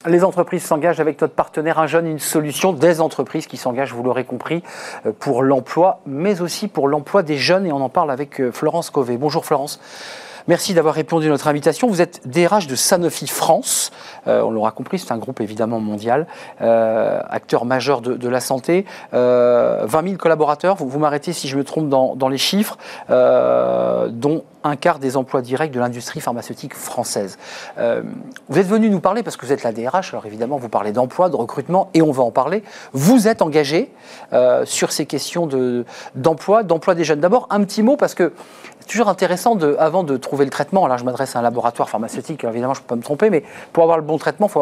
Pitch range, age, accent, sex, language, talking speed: 130-175 Hz, 40-59, French, male, French, 220 wpm